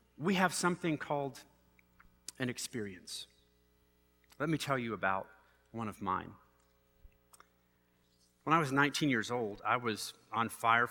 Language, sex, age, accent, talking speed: English, male, 40-59, American, 130 wpm